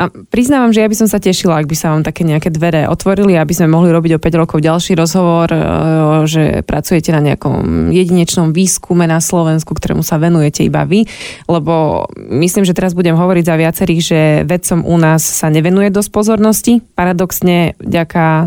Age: 20-39